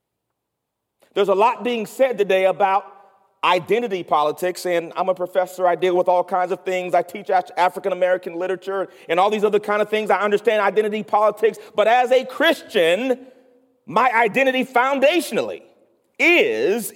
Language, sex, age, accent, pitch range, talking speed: English, male, 40-59, American, 195-275 Hz, 150 wpm